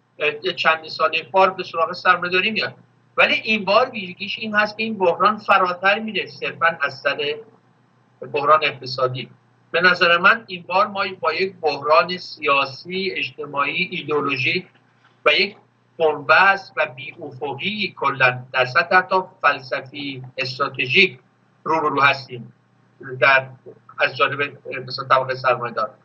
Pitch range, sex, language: 140-180 Hz, male, Persian